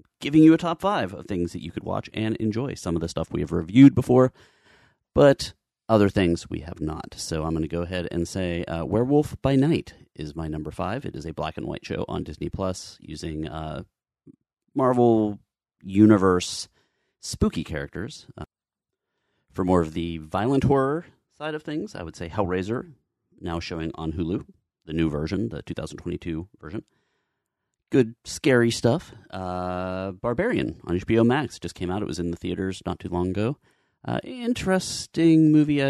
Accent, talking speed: American, 175 wpm